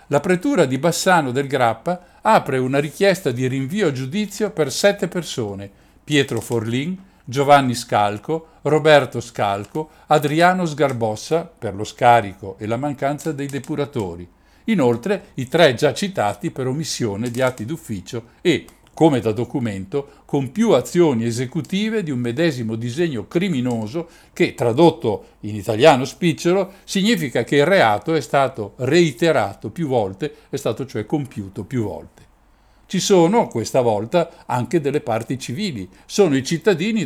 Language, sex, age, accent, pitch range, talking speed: Italian, male, 50-69, native, 120-170 Hz, 140 wpm